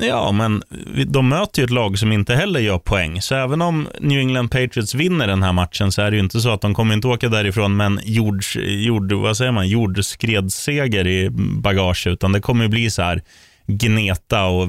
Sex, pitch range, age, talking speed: male, 95-120 Hz, 20-39, 200 wpm